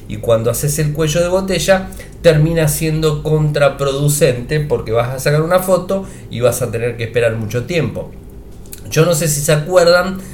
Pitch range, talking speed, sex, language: 115-155 Hz, 175 wpm, male, Spanish